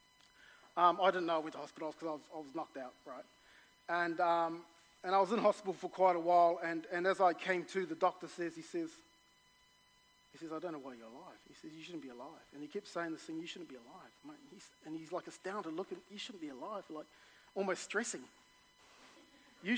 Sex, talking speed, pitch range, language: male, 235 wpm, 165-210 Hz, English